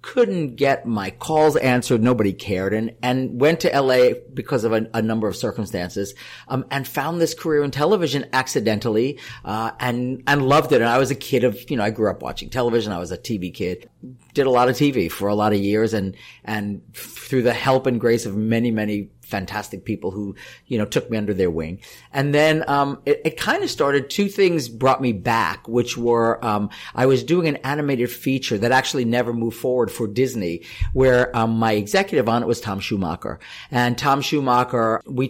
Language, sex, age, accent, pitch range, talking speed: English, male, 40-59, American, 110-135 Hz, 205 wpm